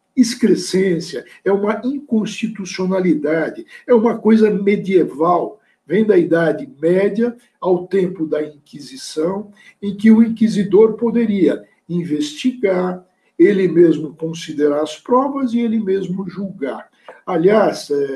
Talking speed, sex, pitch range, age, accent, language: 105 wpm, male, 160-235 Hz, 60-79, Brazilian, Portuguese